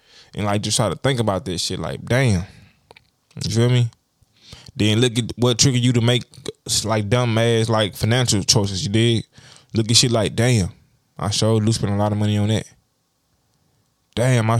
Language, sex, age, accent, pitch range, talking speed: English, male, 20-39, American, 105-120 Hz, 185 wpm